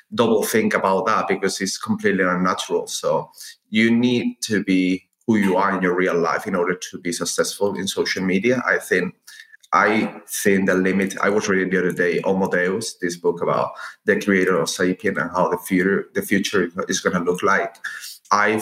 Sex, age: male, 30-49